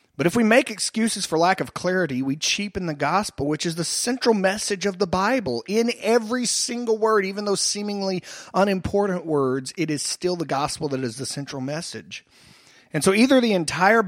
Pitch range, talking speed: 150-205 Hz, 190 wpm